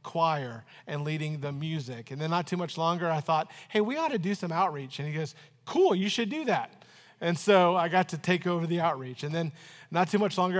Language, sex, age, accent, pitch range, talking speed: English, male, 40-59, American, 160-200 Hz, 245 wpm